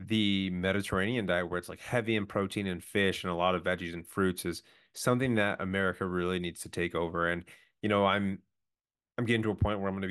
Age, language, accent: 30-49, English, American